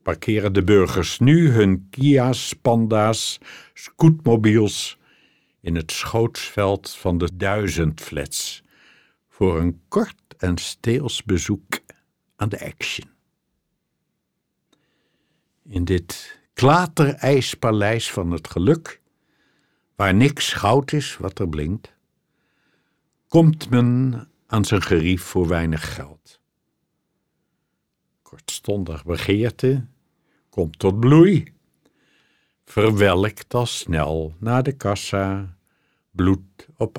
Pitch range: 90-120 Hz